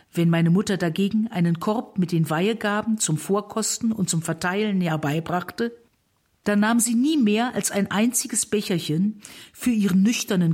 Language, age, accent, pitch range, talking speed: German, 50-69, German, 175-225 Hz, 155 wpm